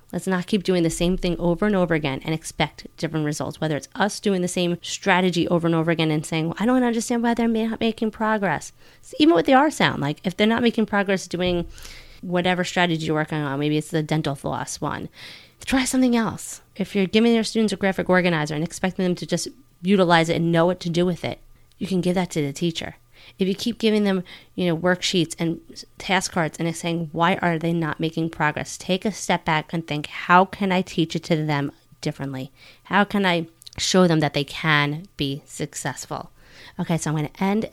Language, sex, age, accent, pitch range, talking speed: English, female, 30-49, American, 155-190 Hz, 225 wpm